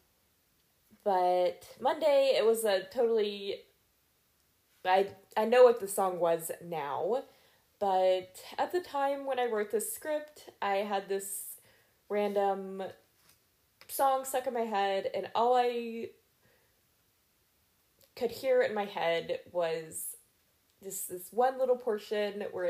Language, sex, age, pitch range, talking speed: English, female, 20-39, 180-245 Hz, 125 wpm